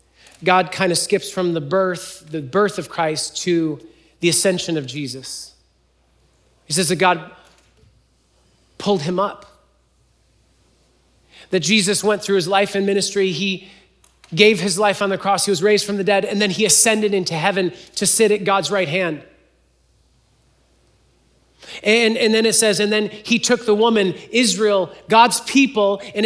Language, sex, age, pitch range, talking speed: English, male, 30-49, 150-210 Hz, 160 wpm